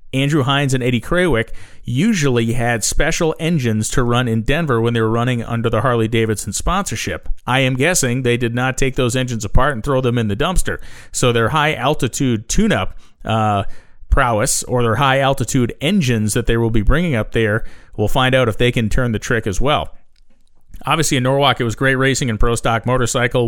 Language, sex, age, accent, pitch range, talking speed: English, male, 40-59, American, 110-130 Hz, 205 wpm